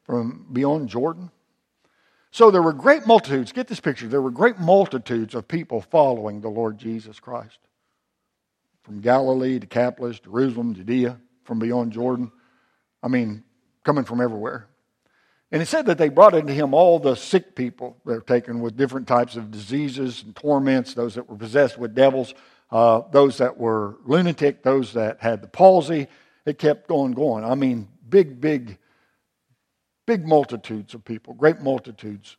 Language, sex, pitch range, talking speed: English, male, 120-145 Hz, 165 wpm